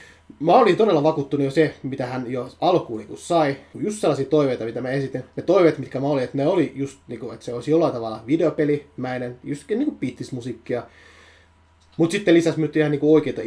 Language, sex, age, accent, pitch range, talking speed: Finnish, male, 30-49, native, 125-155 Hz, 210 wpm